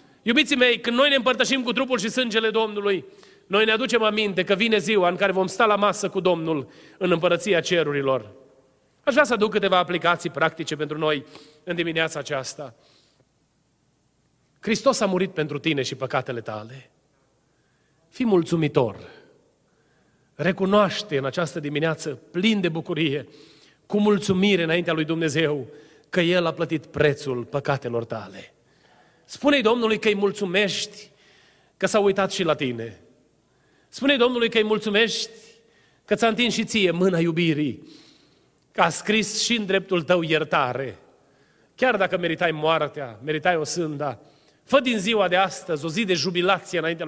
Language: Romanian